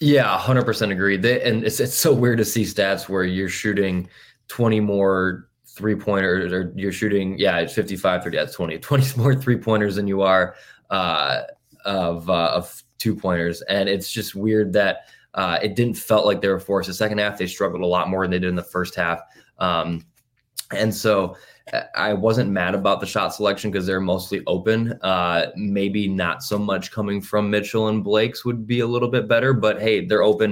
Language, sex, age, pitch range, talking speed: English, male, 20-39, 90-105 Hz, 200 wpm